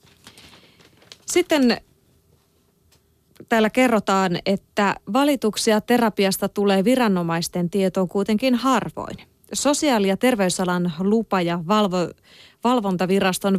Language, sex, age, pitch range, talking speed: Finnish, female, 30-49, 175-230 Hz, 75 wpm